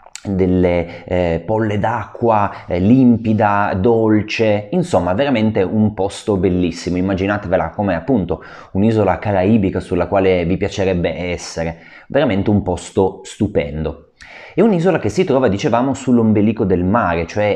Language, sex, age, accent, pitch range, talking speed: Italian, male, 30-49, native, 85-115 Hz, 125 wpm